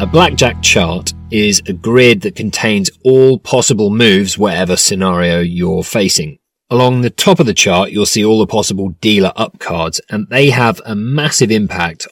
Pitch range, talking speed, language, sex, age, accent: 95-130 Hz, 175 wpm, English, male, 30-49, British